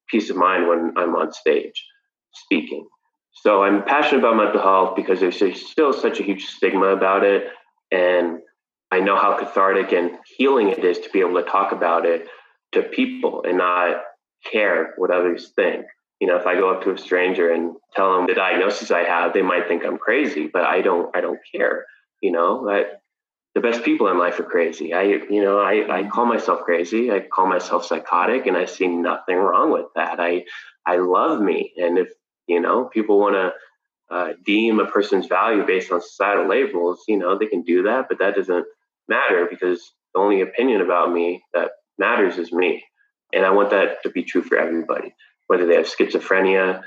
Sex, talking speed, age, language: male, 200 wpm, 20-39, English